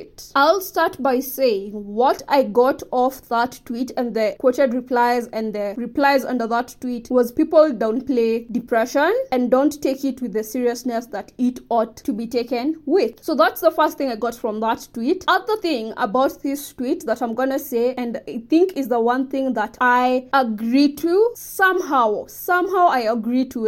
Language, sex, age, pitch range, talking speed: English, female, 20-39, 240-295 Hz, 190 wpm